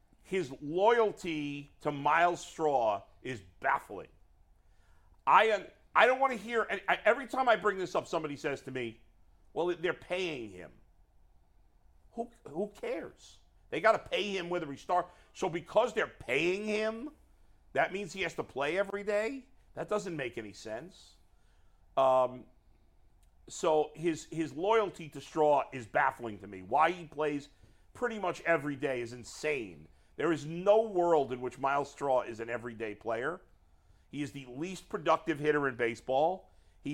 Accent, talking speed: American, 160 wpm